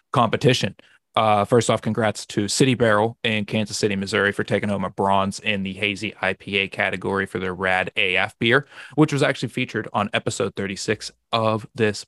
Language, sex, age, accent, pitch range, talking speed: English, male, 20-39, American, 100-120 Hz, 180 wpm